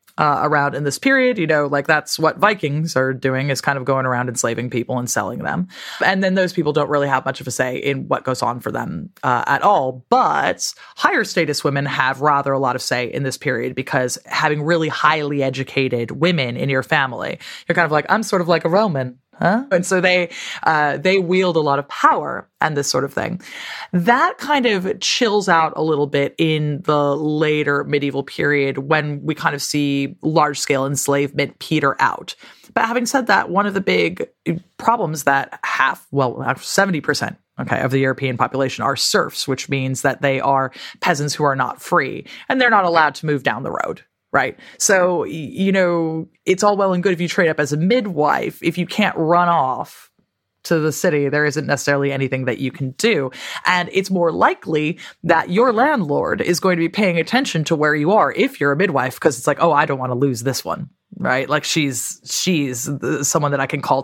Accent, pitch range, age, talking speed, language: American, 135-175 Hz, 20-39, 215 wpm, English